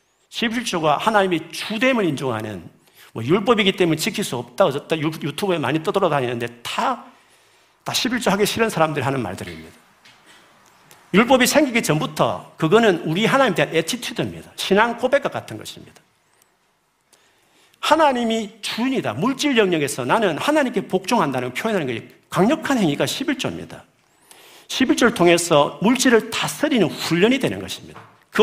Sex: male